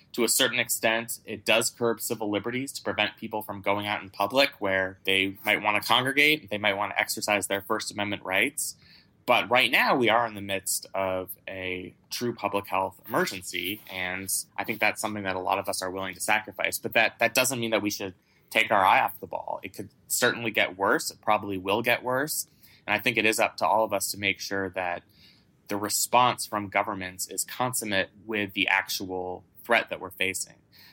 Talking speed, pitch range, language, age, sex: 215 wpm, 95-110 Hz, English, 20-39, male